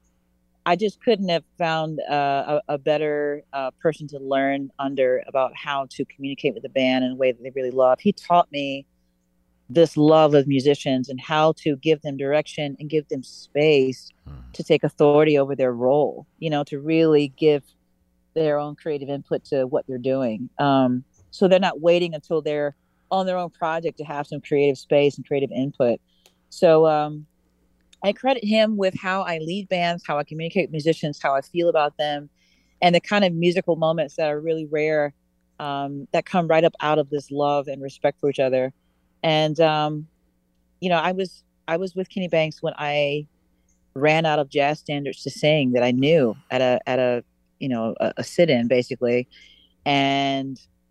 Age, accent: 40-59, American